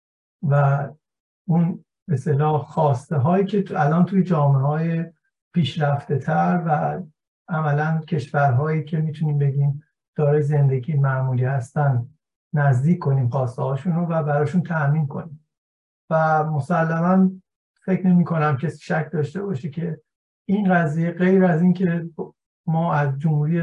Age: 60-79